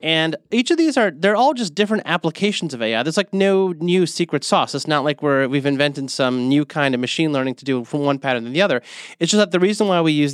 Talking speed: 265 wpm